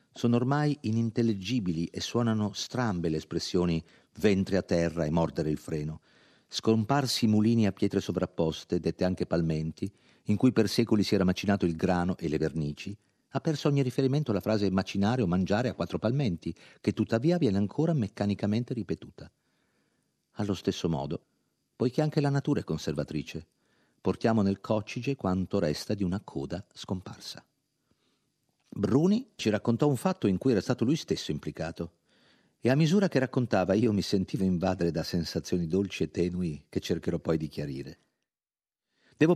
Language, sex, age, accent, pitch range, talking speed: Italian, male, 50-69, native, 85-115 Hz, 155 wpm